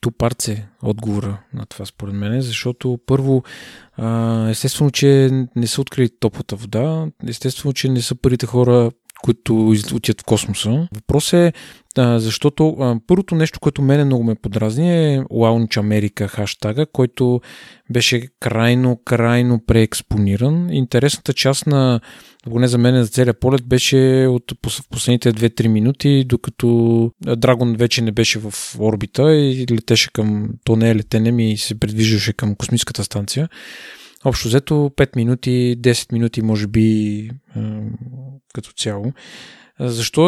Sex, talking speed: male, 135 wpm